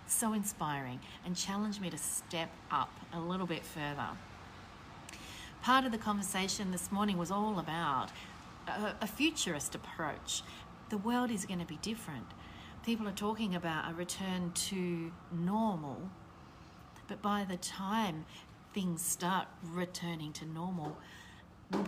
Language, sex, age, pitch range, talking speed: English, female, 40-59, 155-195 Hz, 135 wpm